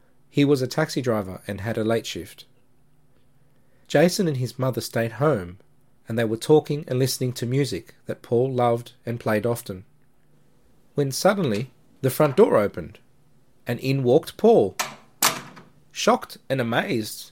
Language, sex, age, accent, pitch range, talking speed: English, male, 40-59, Australian, 120-145 Hz, 150 wpm